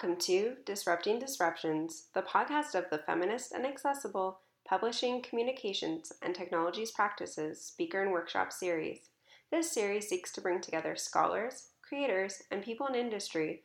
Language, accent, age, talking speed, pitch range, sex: English, American, 10-29, 140 wpm, 175-225 Hz, female